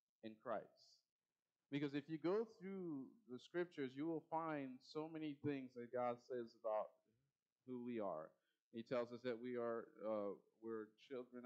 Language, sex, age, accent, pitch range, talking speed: English, male, 40-59, American, 115-145 Hz, 160 wpm